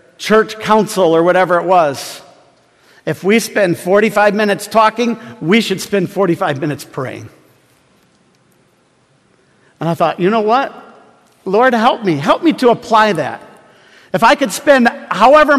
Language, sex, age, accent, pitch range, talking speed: English, male, 50-69, American, 175-235 Hz, 140 wpm